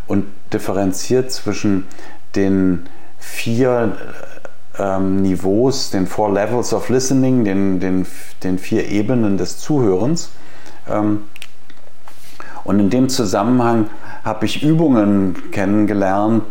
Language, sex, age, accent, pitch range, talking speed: German, male, 50-69, German, 100-125 Hz, 100 wpm